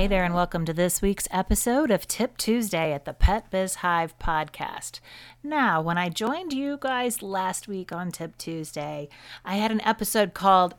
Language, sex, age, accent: English, female, 40-59, American